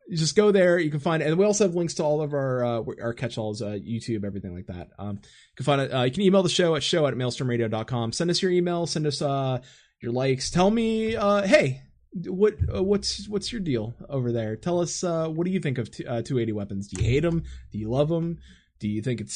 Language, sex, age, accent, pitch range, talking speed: English, male, 20-39, American, 120-175 Hz, 265 wpm